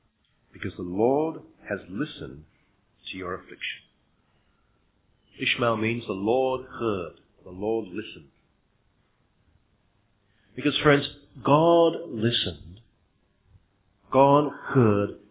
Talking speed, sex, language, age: 85 wpm, male, English, 50-69